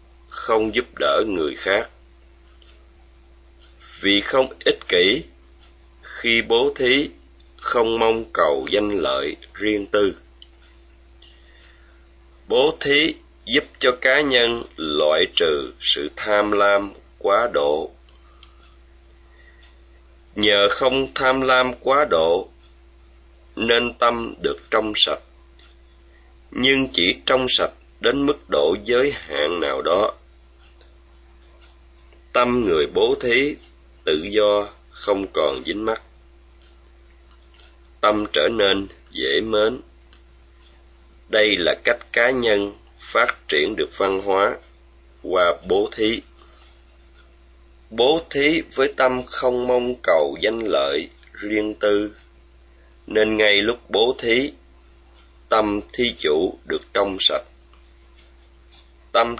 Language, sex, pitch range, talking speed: Vietnamese, male, 70-115 Hz, 105 wpm